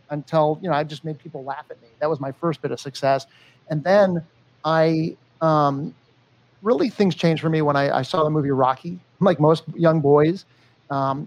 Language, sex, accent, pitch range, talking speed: English, male, American, 135-155 Hz, 200 wpm